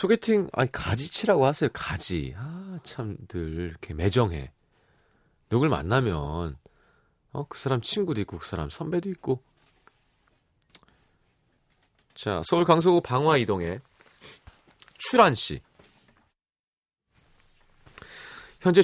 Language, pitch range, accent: Korean, 100-155 Hz, native